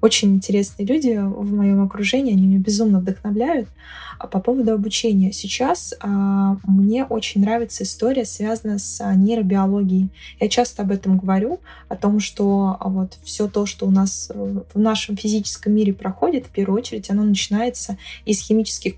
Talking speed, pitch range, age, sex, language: 160 wpm, 195-225 Hz, 20-39, female, Russian